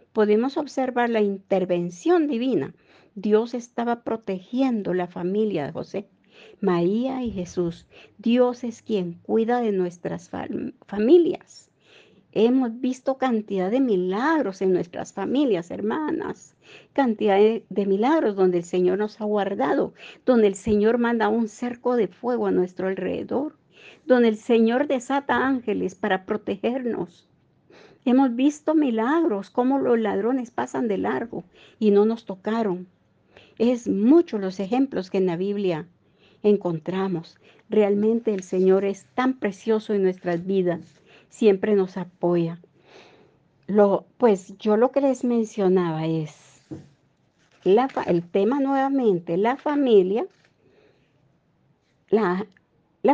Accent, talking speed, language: American, 120 wpm, Spanish